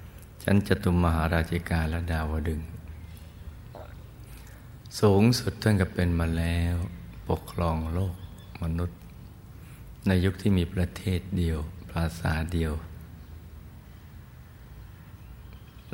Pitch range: 80-95 Hz